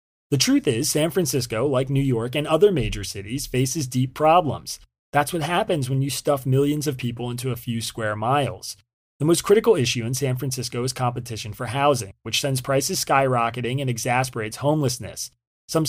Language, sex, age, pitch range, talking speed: English, male, 30-49, 115-150 Hz, 180 wpm